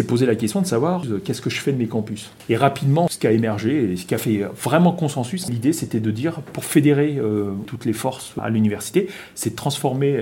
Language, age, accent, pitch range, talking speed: French, 40-59, French, 110-145 Hz, 240 wpm